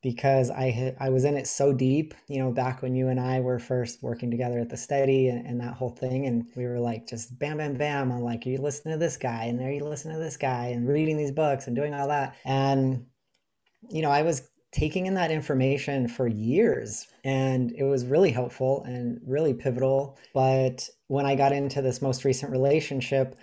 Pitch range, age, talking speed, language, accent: 130-145 Hz, 30-49, 220 wpm, English, American